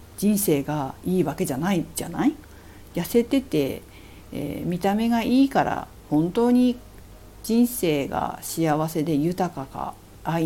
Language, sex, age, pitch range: Japanese, female, 50-69, 135-205 Hz